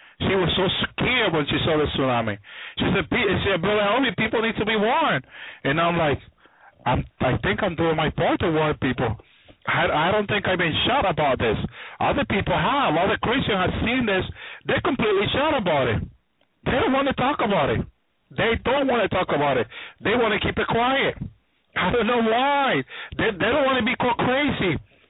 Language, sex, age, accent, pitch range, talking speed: English, male, 60-79, American, 175-240 Hz, 195 wpm